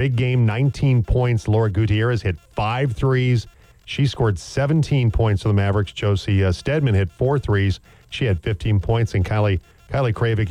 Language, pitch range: English, 100-115 Hz